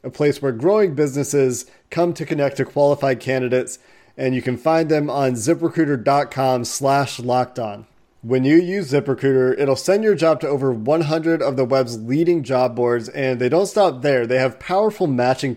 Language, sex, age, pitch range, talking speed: English, male, 30-49, 130-165 Hz, 175 wpm